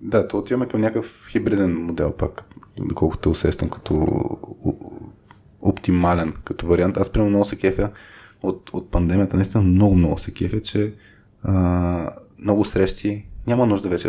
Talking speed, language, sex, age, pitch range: 155 wpm, Bulgarian, male, 20-39, 90-105 Hz